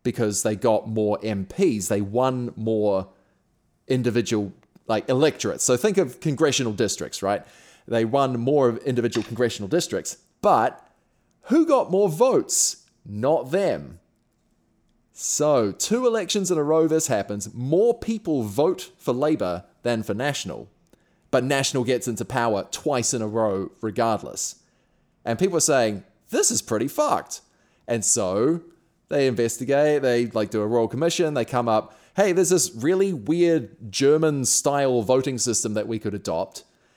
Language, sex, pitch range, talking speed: English, male, 110-150 Hz, 145 wpm